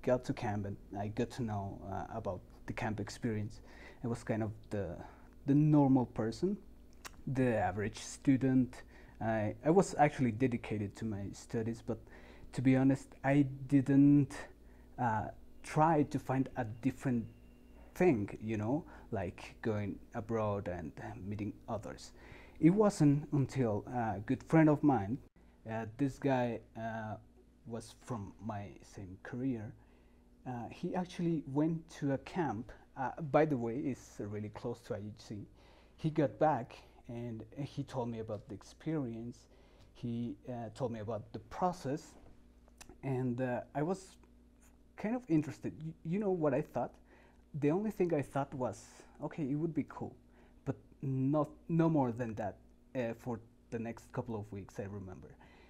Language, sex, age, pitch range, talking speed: English, male, 30-49, 105-140 Hz, 155 wpm